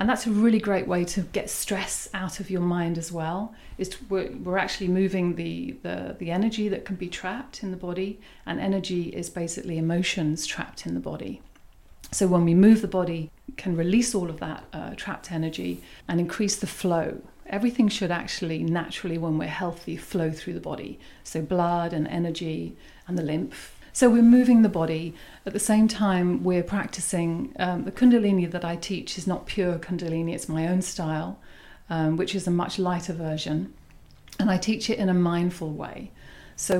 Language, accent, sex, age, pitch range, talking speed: English, British, female, 40-59, 170-200 Hz, 190 wpm